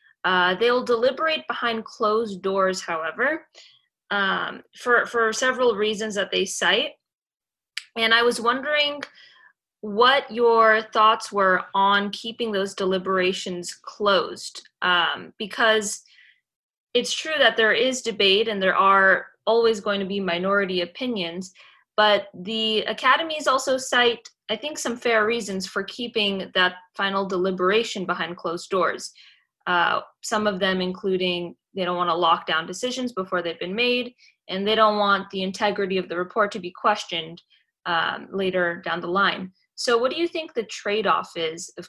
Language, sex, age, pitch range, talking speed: English, female, 20-39, 185-230 Hz, 150 wpm